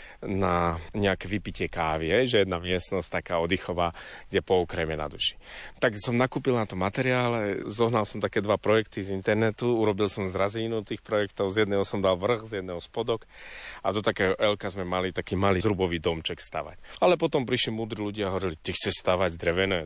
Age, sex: 30-49, male